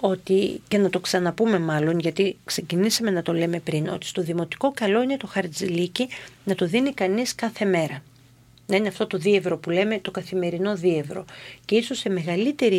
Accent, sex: native, female